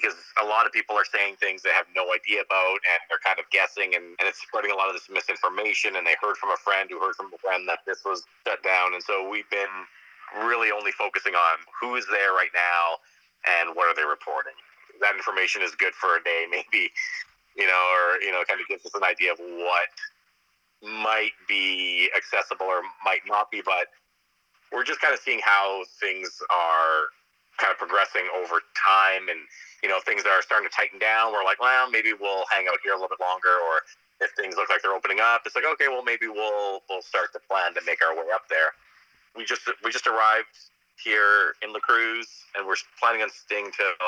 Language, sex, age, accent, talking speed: English, male, 30-49, American, 225 wpm